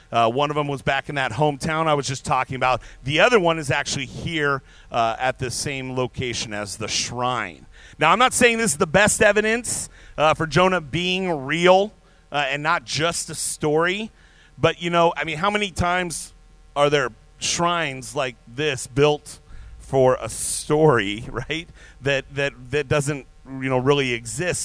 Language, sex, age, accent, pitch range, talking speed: English, male, 40-59, American, 125-170 Hz, 180 wpm